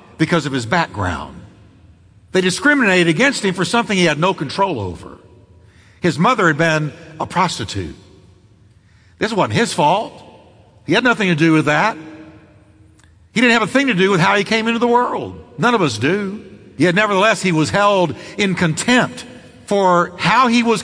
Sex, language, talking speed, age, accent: male, English, 175 wpm, 60-79, American